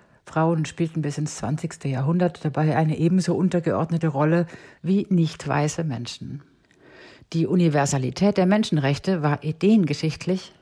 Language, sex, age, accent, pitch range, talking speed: German, female, 50-69, German, 140-175 Hz, 115 wpm